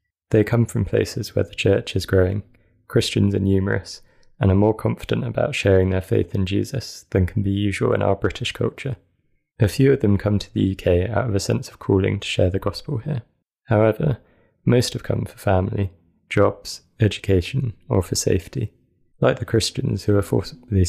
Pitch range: 95-115 Hz